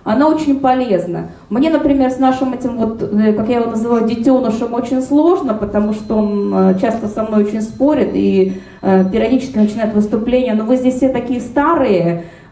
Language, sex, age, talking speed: Russian, female, 20-39, 160 wpm